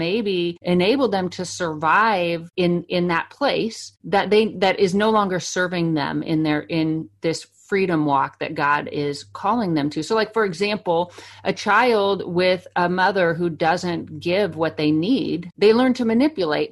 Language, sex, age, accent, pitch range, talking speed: English, female, 40-59, American, 160-200 Hz, 170 wpm